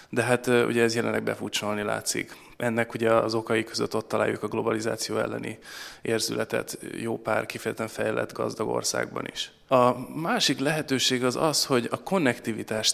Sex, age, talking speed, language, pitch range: male, 20-39, 155 wpm, Hungarian, 110-120 Hz